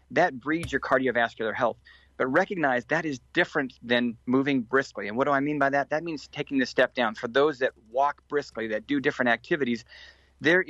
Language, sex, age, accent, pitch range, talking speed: English, male, 40-59, American, 115-140 Hz, 200 wpm